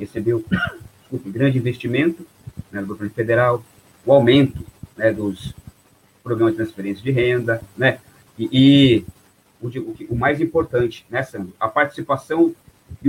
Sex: male